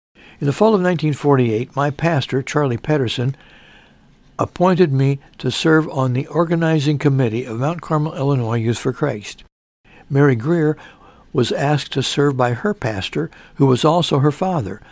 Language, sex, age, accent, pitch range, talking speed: English, male, 60-79, American, 125-155 Hz, 155 wpm